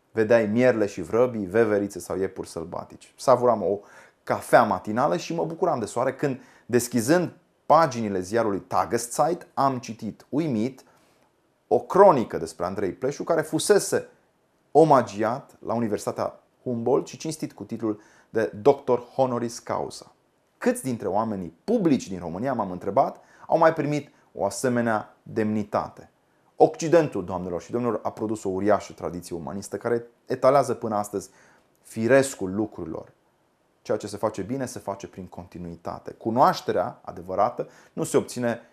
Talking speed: 135 wpm